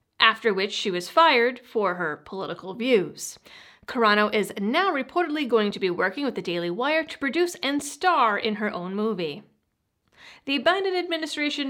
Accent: American